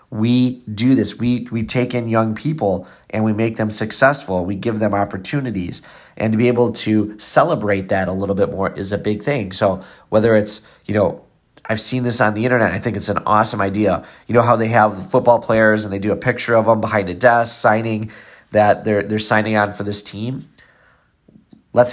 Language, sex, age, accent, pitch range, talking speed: English, male, 30-49, American, 100-120 Hz, 210 wpm